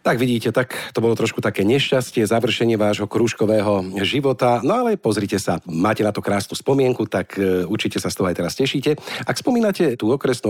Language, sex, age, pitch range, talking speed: Slovak, male, 50-69, 95-120 Hz, 190 wpm